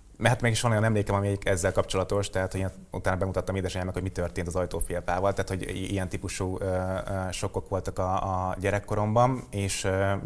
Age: 20-39